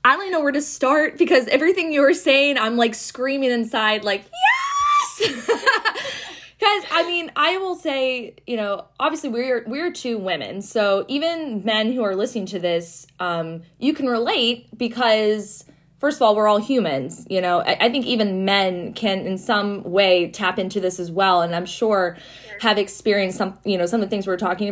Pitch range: 180-235 Hz